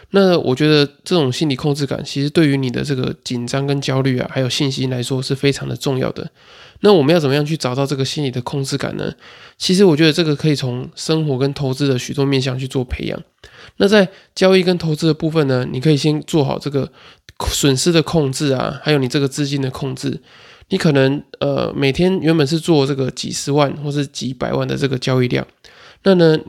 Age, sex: 20-39, male